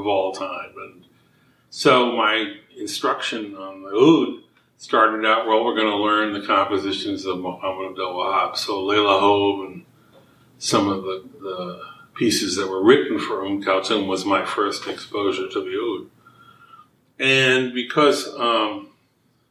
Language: English